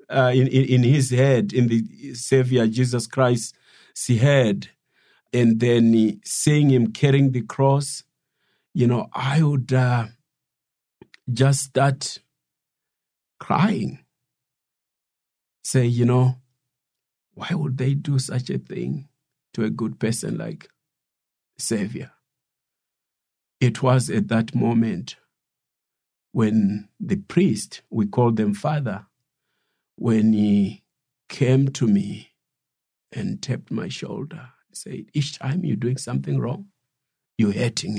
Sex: male